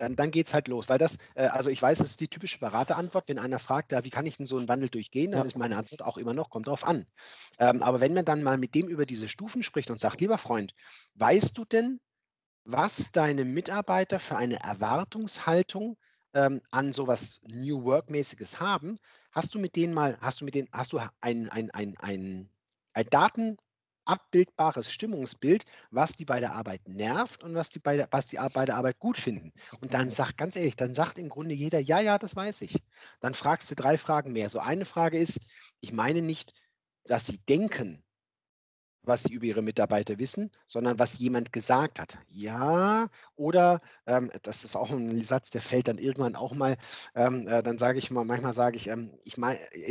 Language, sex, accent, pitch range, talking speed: German, male, German, 120-160 Hz, 200 wpm